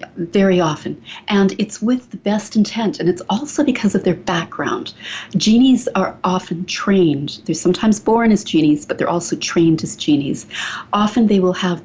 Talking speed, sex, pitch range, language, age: 170 wpm, female, 170-205 Hz, English, 40-59